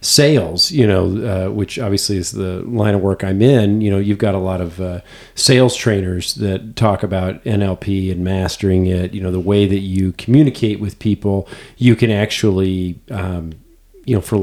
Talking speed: 190 wpm